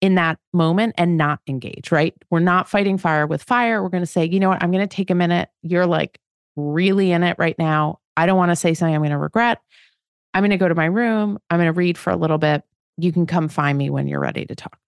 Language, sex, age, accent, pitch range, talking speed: English, female, 30-49, American, 160-210 Hz, 275 wpm